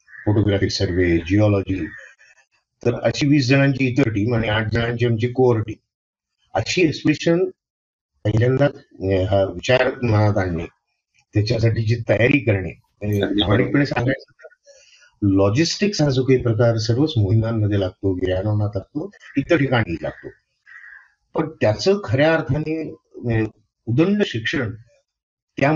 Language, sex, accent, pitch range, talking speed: Marathi, male, native, 105-145 Hz, 105 wpm